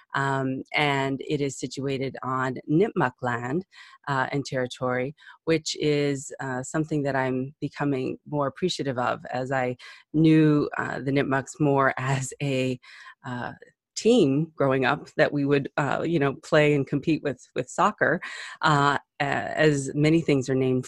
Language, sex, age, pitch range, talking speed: English, female, 30-49, 135-155 Hz, 150 wpm